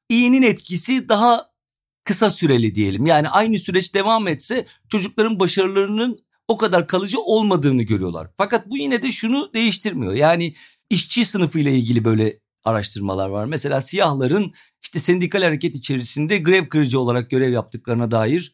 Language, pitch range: Turkish, 145-220 Hz